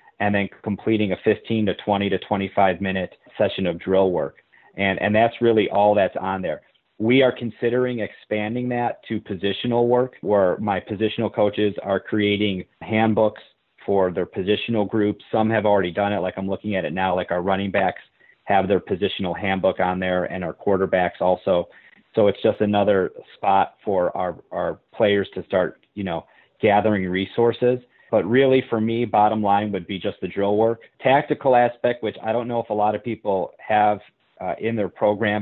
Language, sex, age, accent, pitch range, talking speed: English, male, 40-59, American, 95-110 Hz, 185 wpm